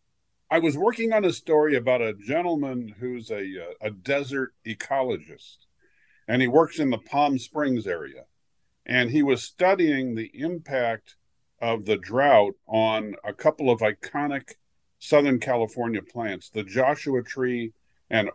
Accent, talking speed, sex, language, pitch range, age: American, 145 wpm, male, English, 115-145 Hz, 50-69